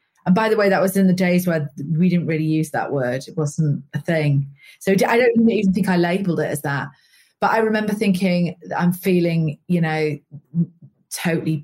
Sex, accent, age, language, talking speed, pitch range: female, British, 30-49, English, 200 wpm, 155-195 Hz